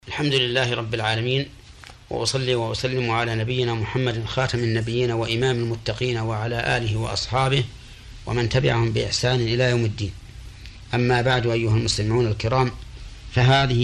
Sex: male